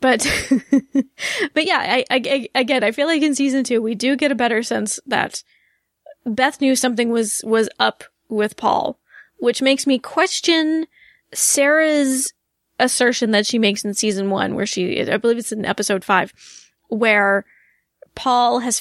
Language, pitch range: English, 220-275 Hz